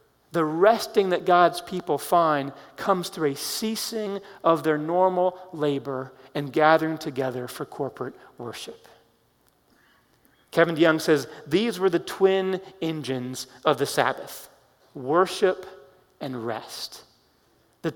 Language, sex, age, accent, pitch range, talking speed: English, male, 40-59, American, 145-185 Hz, 115 wpm